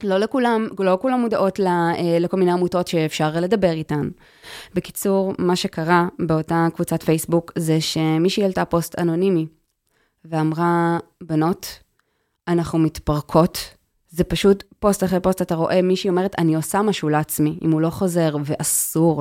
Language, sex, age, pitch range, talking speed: Hebrew, female, 20-39, 160-205 Hz, 135 wpm